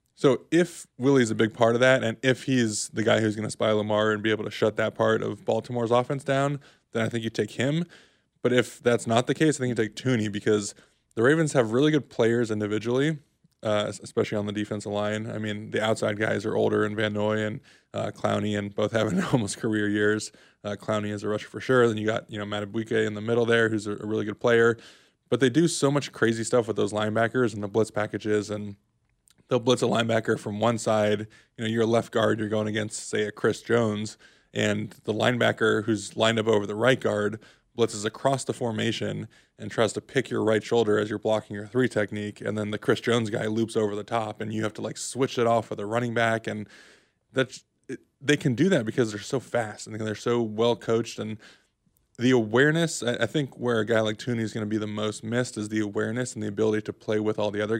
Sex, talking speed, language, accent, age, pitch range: male, 240 wpm, English, American, 20-39, 105-120 Hz